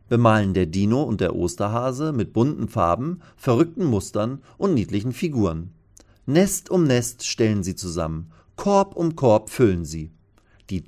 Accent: German